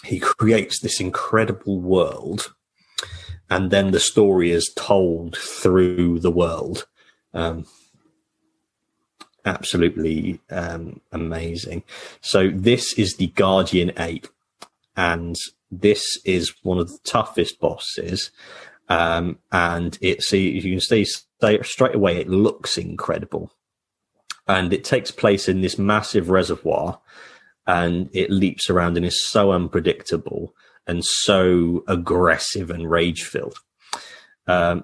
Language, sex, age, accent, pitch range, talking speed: English, male, 30-49, British, 85-95 Hz, 115 wpm